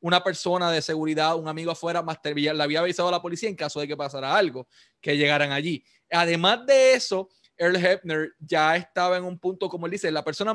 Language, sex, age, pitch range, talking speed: Spanish, male, 20-39, 165-210 Hz, 220 wpm